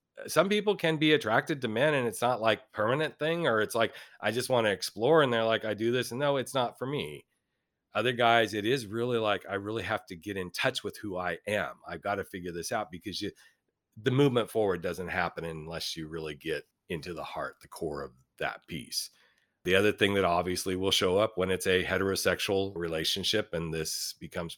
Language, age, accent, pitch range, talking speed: English, 40-59, American, 90-130 Hz, 220 wpm